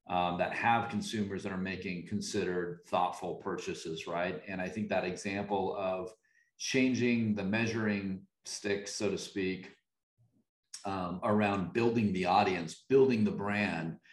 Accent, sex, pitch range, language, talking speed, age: American, male, 100-120 Hz, English, 135 wpm, 40-59